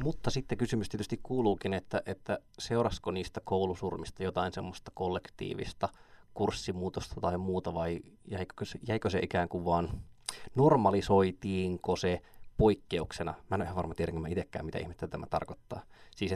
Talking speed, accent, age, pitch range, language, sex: 145 wpm, native, 20-39, 90-105 Hz, Finnish, male